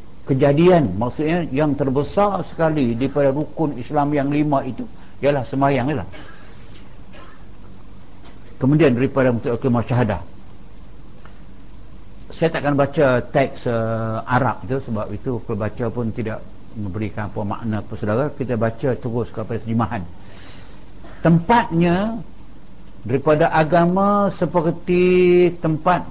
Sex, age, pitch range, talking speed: male, 60-79, 115-165 Hz, 95 wpm